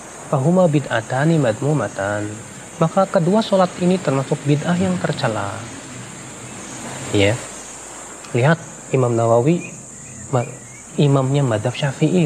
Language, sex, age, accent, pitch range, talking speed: Indonesian, male, 30-49, native, 130-175 Hz, 80 wpm